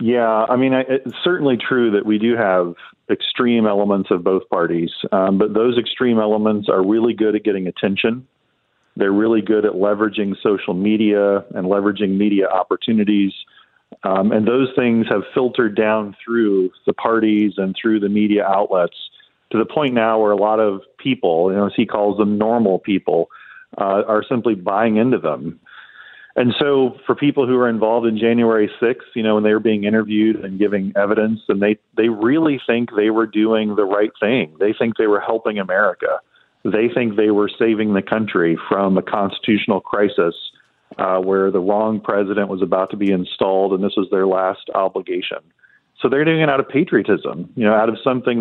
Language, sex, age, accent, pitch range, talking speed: English, male, 40-59, American, 100-115 Hz, 185 wpm